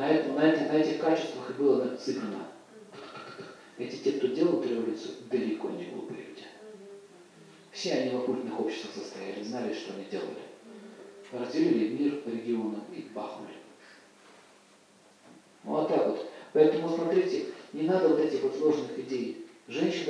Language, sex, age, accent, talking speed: Russian, male, 40-59, native, 135 wpm